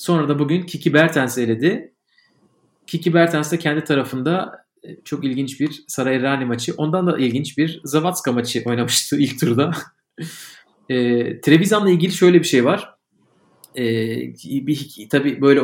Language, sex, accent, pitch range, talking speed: Turkish, male, native, 125-155 Hz, 140 wpm